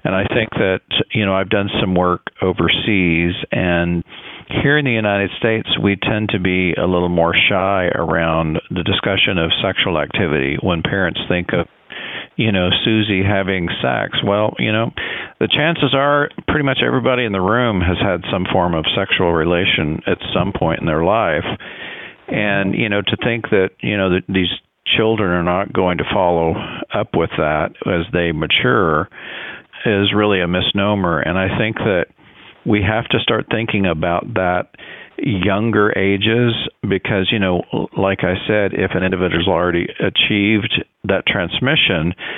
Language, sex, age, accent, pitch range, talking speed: English, male, 50-69, American, 90-105 Hz, 165 wpm